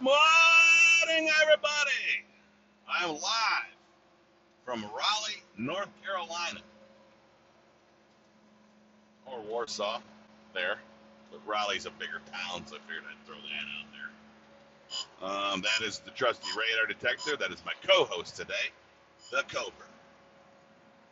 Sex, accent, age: male, American, 40-59